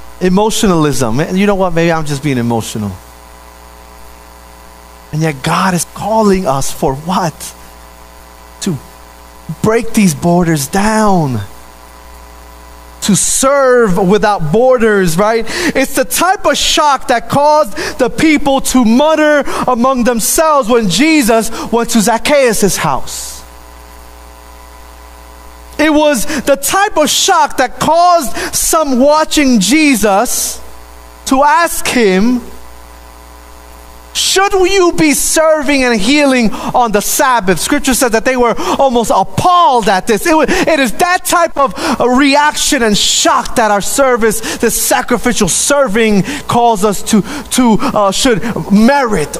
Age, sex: 30-49, male